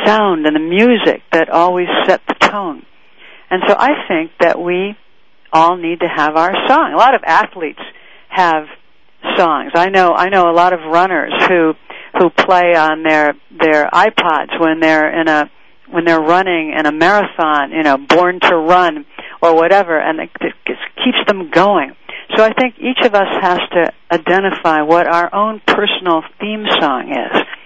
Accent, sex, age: American, female, 60-79